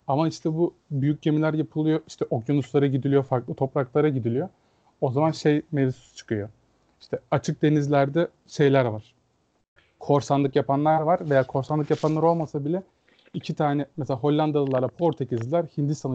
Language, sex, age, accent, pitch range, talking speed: Turkish, male, 30-49, native, 130-155 Hz, 135 wpm